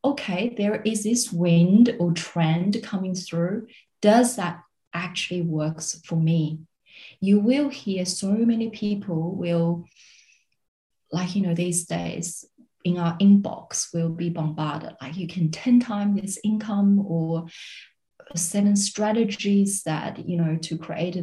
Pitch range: 170-215 Hz